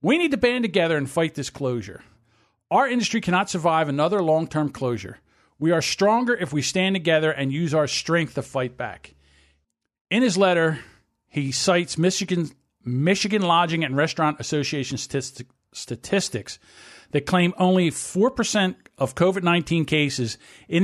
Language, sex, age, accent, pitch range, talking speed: English, male, 50-69, American, 135-180 Hz, 145 wpm